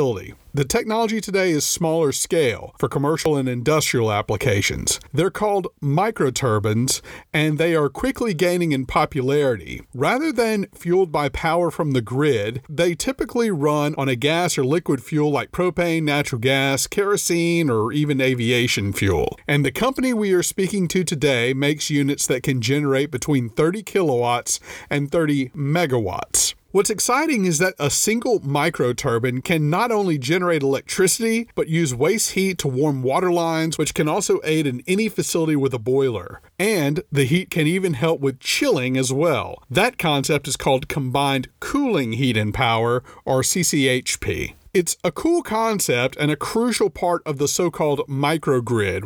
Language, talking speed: English, 160 wpm